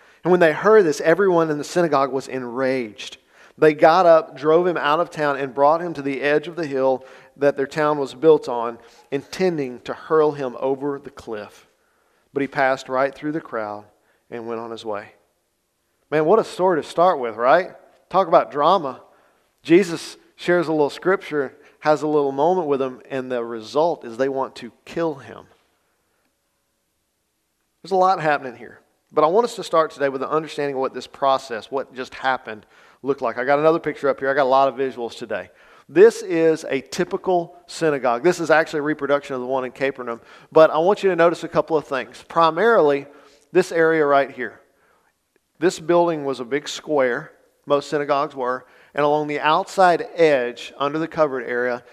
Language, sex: English, male